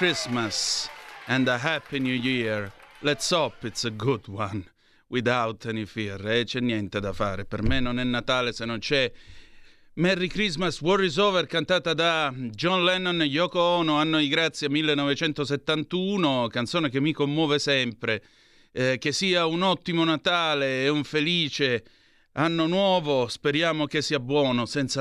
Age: 30-49